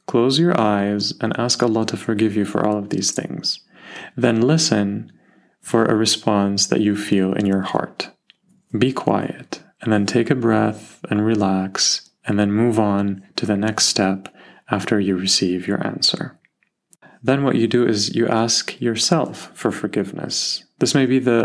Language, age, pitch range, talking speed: English, 30-49, 105-115 Hz, 170 wpm